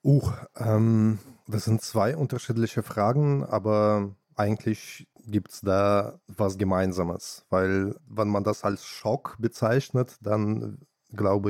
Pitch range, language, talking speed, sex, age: 100-115 Hz, German, 120 wpm, male, 20-39